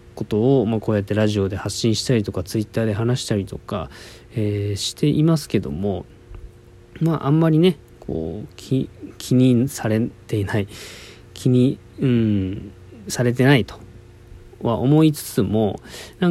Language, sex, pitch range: Japanese, male, 100-130 Hz